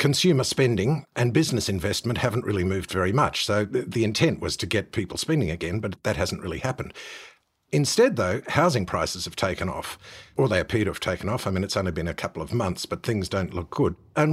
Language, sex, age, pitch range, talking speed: English, male, 50-69, 100-140 Hz, 220 wpm